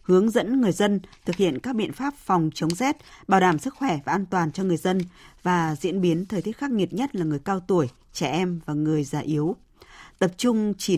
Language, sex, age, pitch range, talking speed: Vietnamese, female, 20-39, 160-205 Hz, 235 wpm